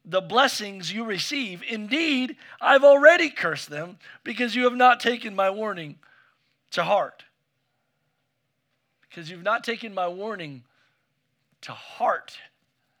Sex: male